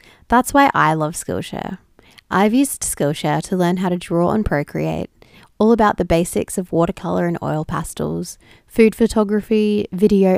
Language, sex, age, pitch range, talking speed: English, female, 20-39, 175-235 Hz, 155 wpm